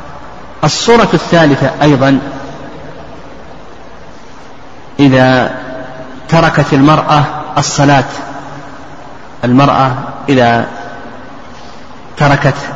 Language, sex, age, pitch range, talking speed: Arabic, male, 40-59, 130-145 Hz, 45 wpm